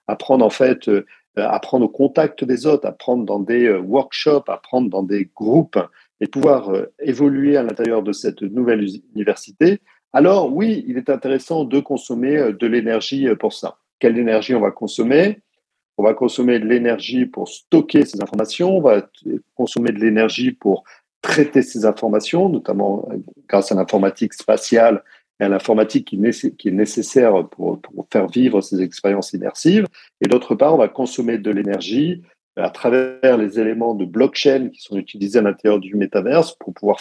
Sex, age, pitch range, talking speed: male, 50-69, 105-130 Hz, 160 wpm